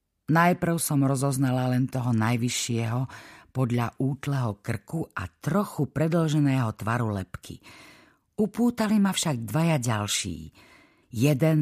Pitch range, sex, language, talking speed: 100-145 Hz, female, Slovak, 105 wpm